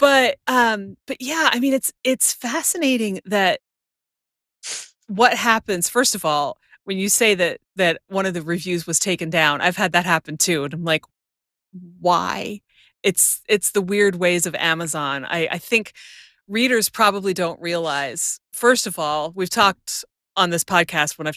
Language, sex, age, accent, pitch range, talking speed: English, female, 30-49, American, 160-200 Hz, 170 wpm